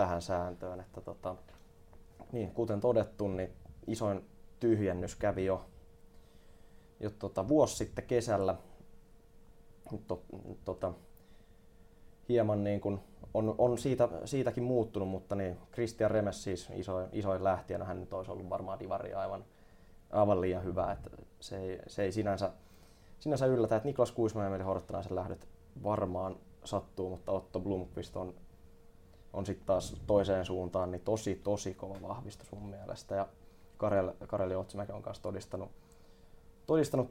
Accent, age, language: native, 20-39, Finnish